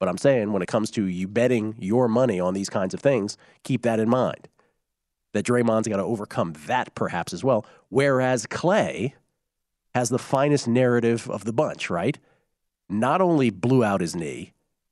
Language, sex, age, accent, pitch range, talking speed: English, male, 40-59, American, 110-150 Hz, 180 wpm